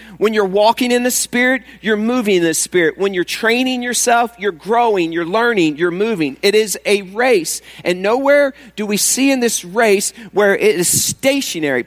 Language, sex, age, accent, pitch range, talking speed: English, male, 40-59, American, 195-245 Hz, 185 wpm